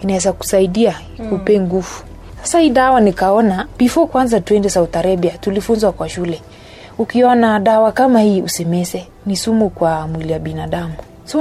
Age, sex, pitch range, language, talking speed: 30-49, female, 180-225 Hz, Swahili, 140 wpm